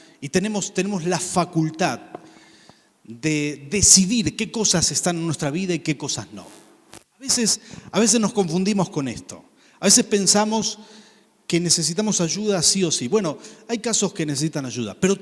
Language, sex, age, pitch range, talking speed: Spanish, male, 40-59, 155-205 Hz, 160 wpm